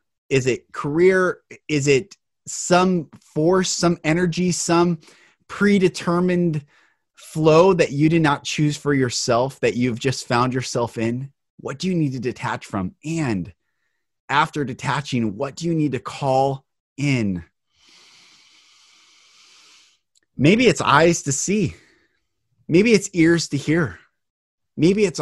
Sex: male